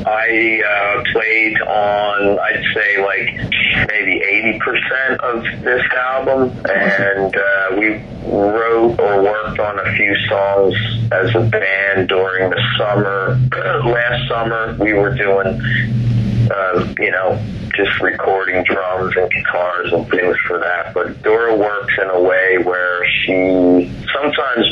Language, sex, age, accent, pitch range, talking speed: English, male, 40-59, American, 95-115 Hz, 130 wpm